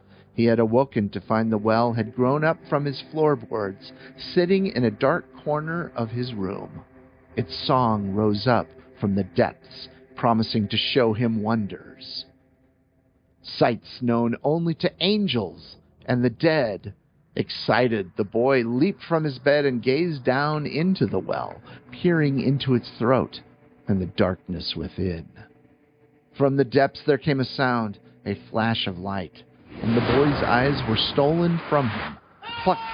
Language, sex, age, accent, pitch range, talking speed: English, male, 50-69, American, 100-135 Hz, 150 wpm